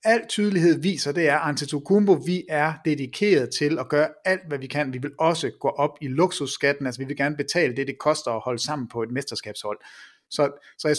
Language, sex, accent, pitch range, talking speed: English, male, Danish, 130-170 Hz, 220 wpm